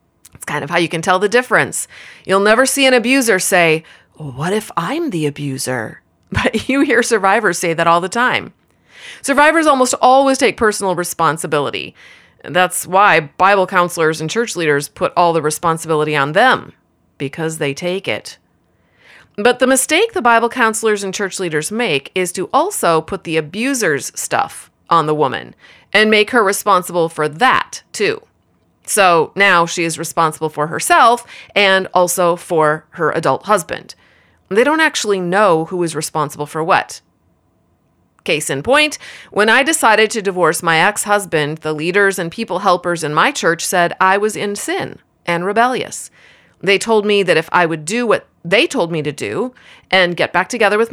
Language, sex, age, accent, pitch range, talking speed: English, female, 30-49, American, 160-225 Hz, 170 wpm